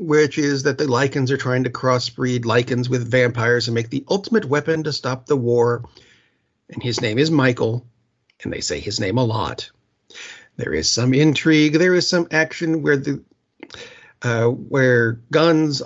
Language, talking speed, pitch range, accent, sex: English, 175 wpm, 120-150 Hz, American, male